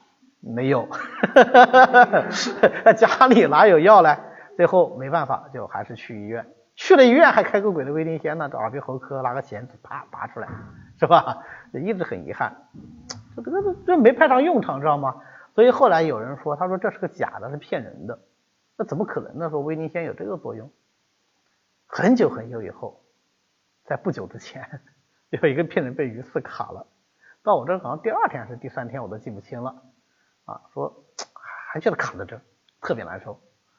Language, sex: Chinese, male